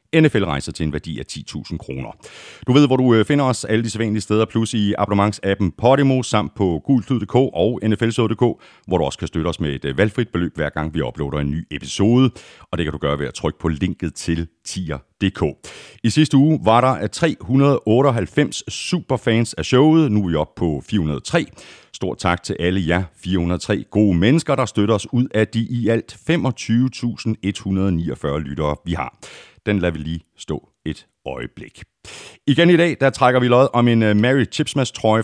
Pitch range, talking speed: 85-135 Hz, 185 wpm